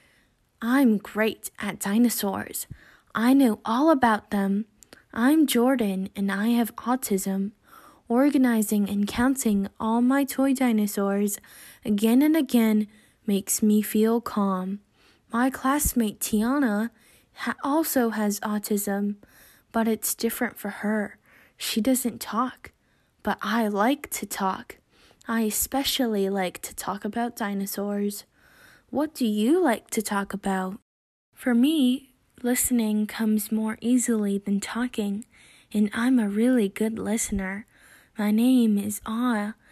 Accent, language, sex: American, English, female